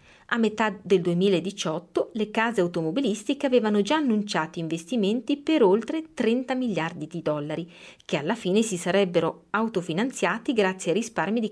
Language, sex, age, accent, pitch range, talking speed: Italian, female, 30-49, native, 165-235 Hz, 140 wpm